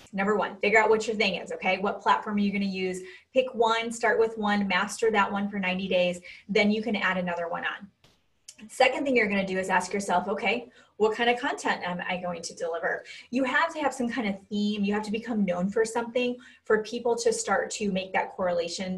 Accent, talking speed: American, 240 wpm